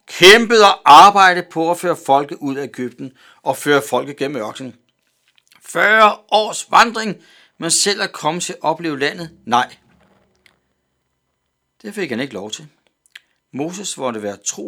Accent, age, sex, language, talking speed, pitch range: native, 60-79, male, Danish, 150 wpm, 110-165 Hz